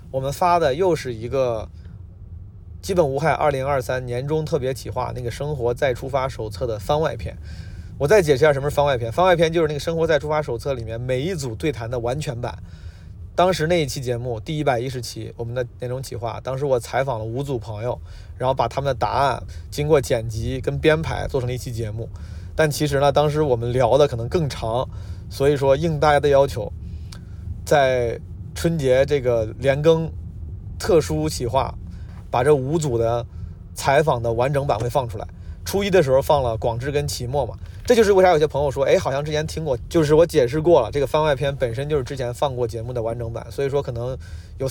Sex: male